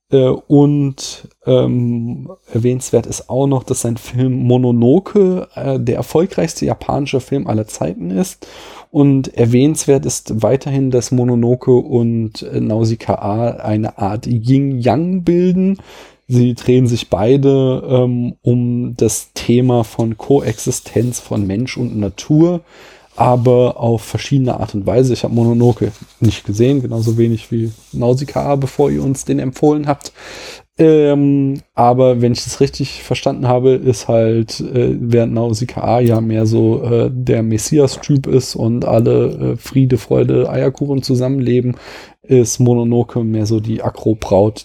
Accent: German